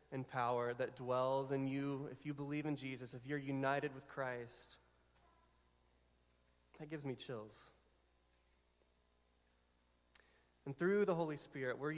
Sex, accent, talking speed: male, American, 130 wpm